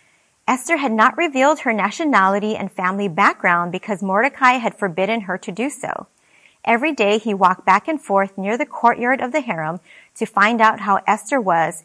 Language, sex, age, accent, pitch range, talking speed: English, female, 30-49, American, 195-255 Hz, 180 wpm